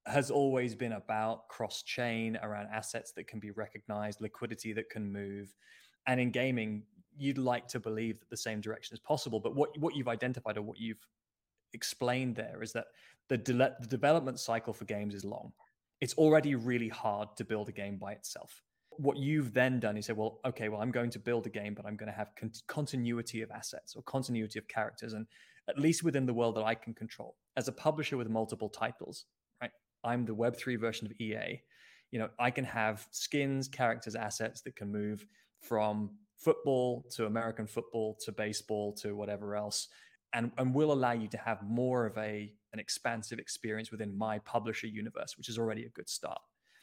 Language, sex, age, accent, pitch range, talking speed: English, male, 20-39, British, 110-125 Hz, 195 wpm